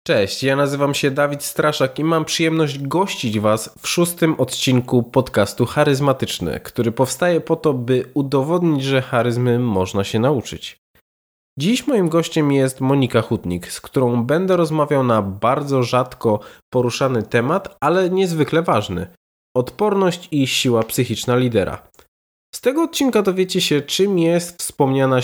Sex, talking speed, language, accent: male, 140 wpm, Polish, native